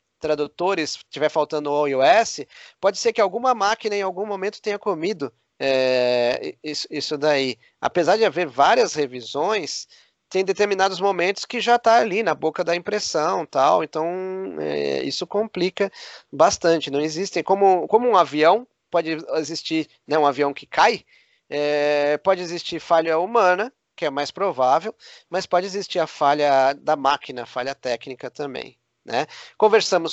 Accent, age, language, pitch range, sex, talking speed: Brazilian, 20-39, Portuguese, 140-185 Hz, male, 150 wpm